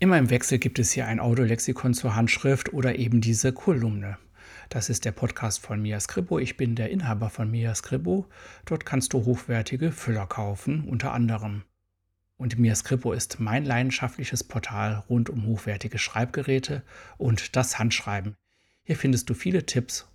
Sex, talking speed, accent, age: male, 165 wpm, German, 60-79